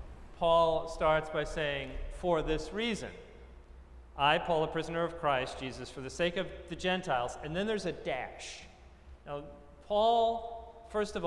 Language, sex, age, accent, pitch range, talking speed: English, male, 40-59, American, 130-185 Hz, 155 wpm